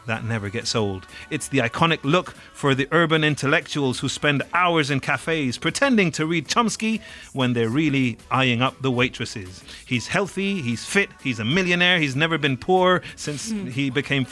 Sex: male